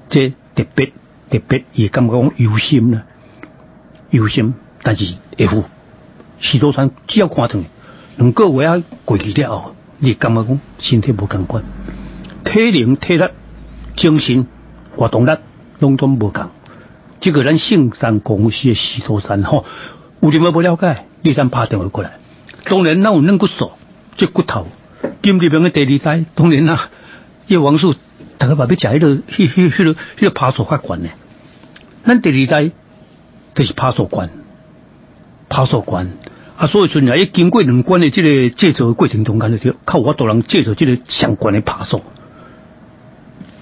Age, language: 60-79, Chinese